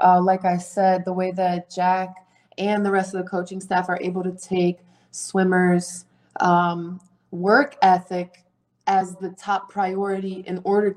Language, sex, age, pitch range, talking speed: English, female, 20-39, 175-190 Hz, 160 wpm